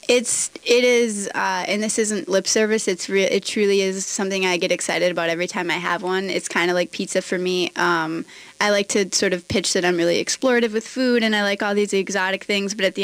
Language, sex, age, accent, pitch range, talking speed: English, female, 20-39, American, 180-205 Hz, 245 wpm